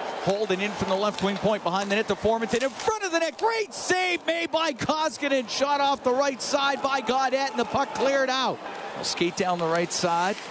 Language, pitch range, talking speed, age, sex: English, 220-350 Hz, 230 wpm, 40-59, male